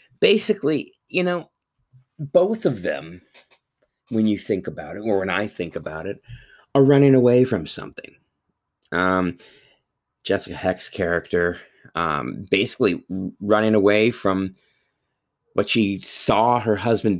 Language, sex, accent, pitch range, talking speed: English, male, American, 90-135 Hz, 125 wpm